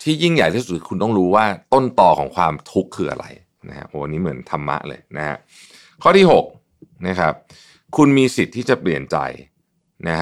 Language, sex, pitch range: Thai, male, 85-120 Hz